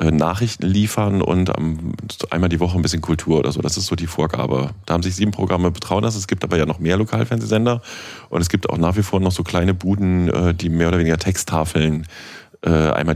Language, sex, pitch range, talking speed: German, male, 80-105 Hz, 210 wpm